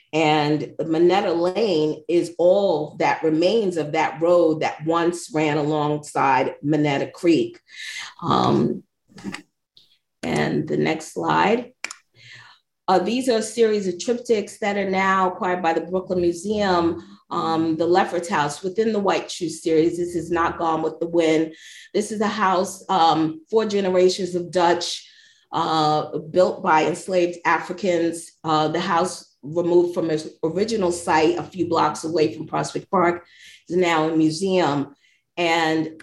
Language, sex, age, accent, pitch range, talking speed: English, female, 30-49, American, 160-190 Hz, 145 wpm